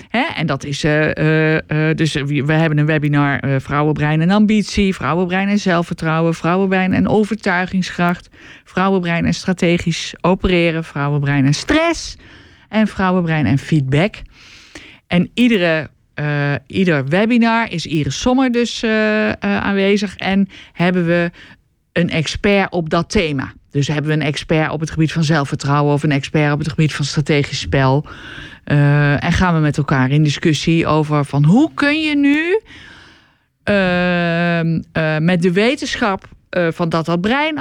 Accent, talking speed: Dutch, 155 wpm